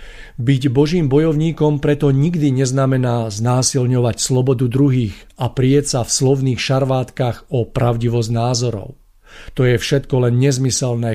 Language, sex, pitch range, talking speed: Slovak, male, 120-140 Hz, 120 wpm